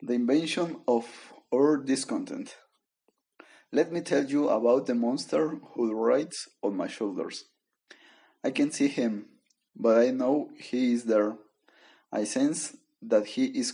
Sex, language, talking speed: male, English, 140 wpm